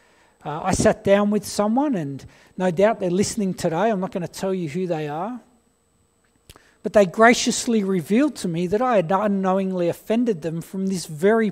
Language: English